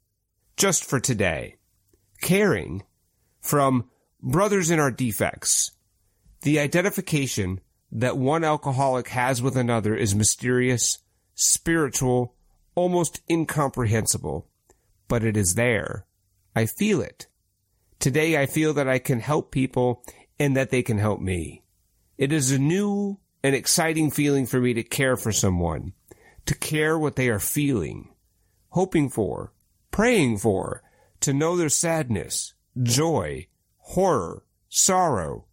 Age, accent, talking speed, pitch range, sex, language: 40-59, American, 125 wpm, 105-145 Hz, male, English